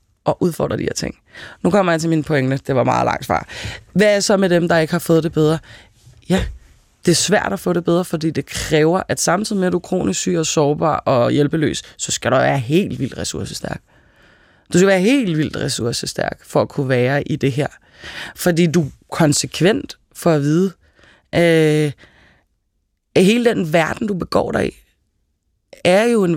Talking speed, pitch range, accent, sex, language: 200 wpm, 150-185 Hz, native, female, Danish